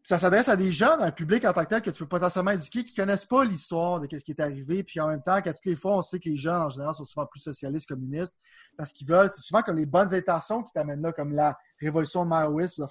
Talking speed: 300 wpm